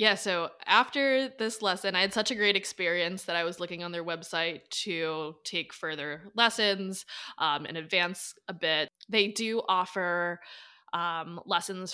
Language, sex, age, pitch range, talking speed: English, female, 20-39, 160-200 Hz, 160 wpm